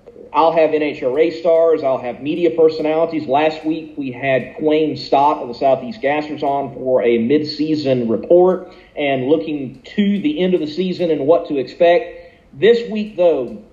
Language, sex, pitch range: English, male, 140-200 Hz